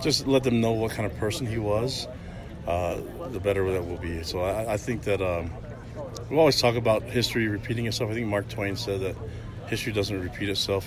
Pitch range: 90-110 Hz